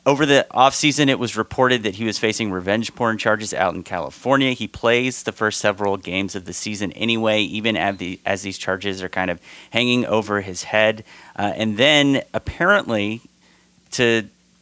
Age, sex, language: 30-49, male, English